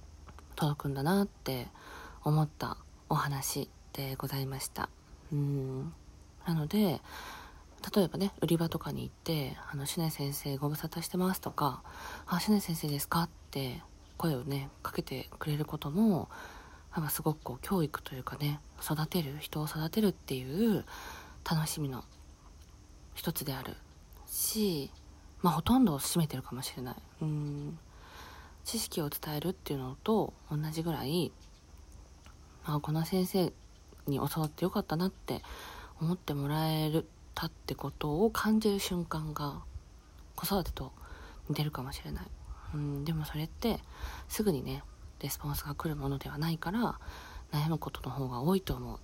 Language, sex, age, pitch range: Japanese, female, 40-59, 125-170 Hz